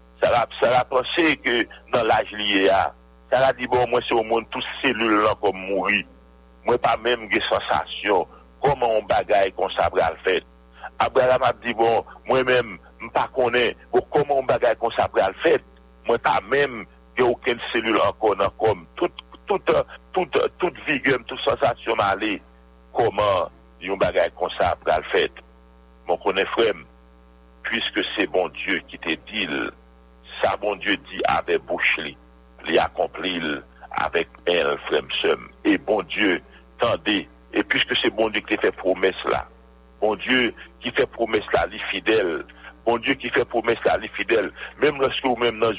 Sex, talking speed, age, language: male, 165 wpm, 60-79, English